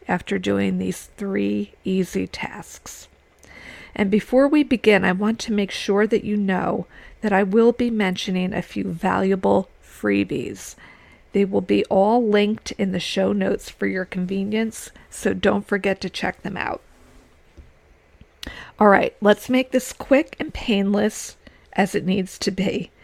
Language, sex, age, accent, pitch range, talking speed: English, female, 50-69, American, 185-220 Hz, 155 wpm